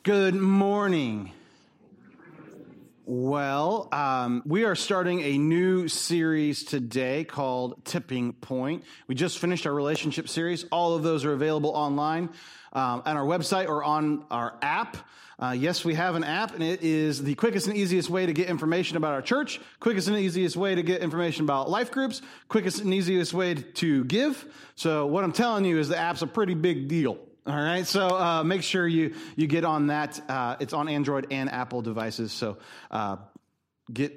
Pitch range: 125-185 Hz